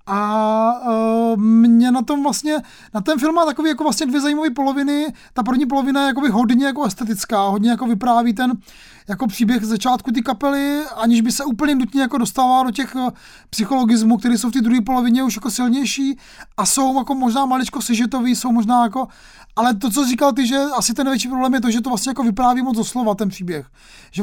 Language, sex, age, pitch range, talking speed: Czech, male, 30-49, 225-255 Hz, 215 wpm